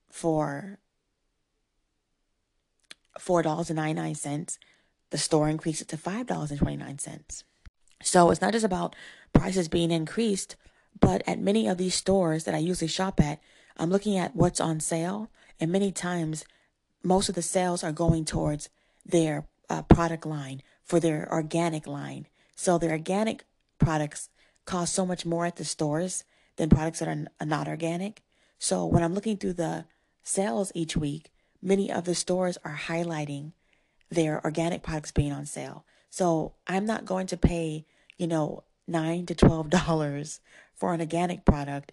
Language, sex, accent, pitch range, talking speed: English, female, American, 155-185 Hz, 160 wpm